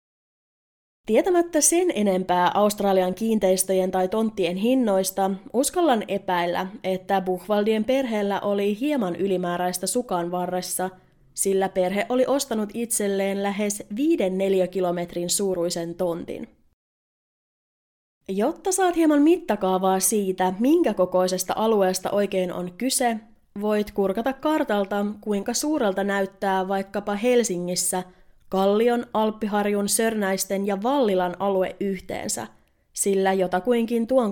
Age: 20-39